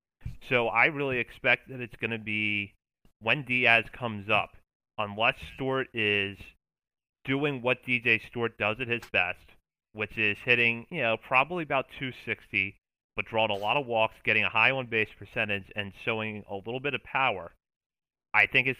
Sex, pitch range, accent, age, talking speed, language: male, 100-115 Hz, American, 30-49, 170 wpm, English